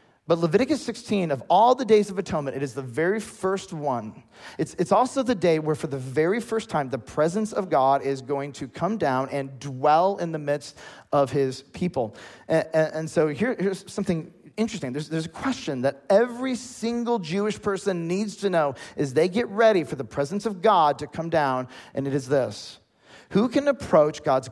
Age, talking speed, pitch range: 40-59, 200 wpm, 145-210 Hz